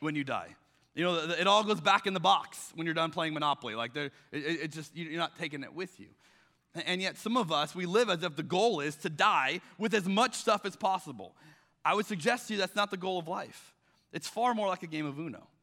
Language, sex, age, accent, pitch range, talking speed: English, male, 30-49, American, 130-175 Hz, 255 wpm